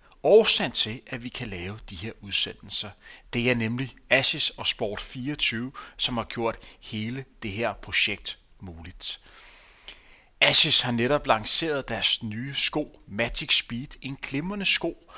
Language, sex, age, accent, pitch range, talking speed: Danish, male, 30-49, native, 115-145 Hz, 140 wpm